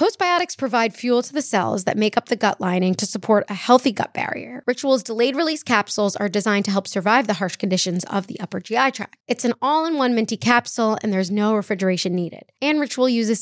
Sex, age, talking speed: female, 20-39, 215 wpm